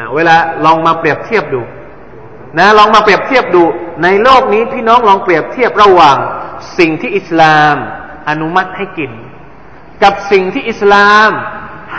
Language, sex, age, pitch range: Thai, male, 20-39, 185-295 Hz